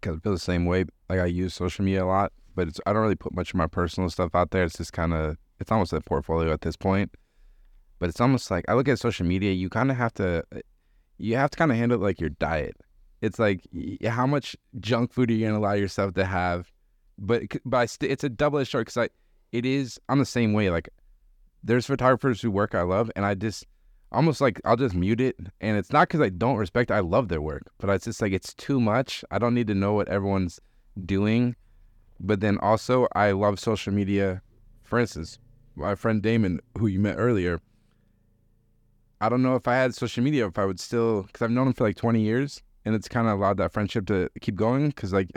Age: 20-39